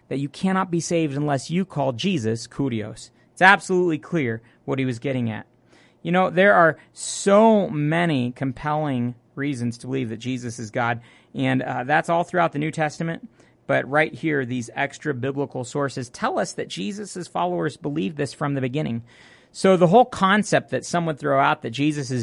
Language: English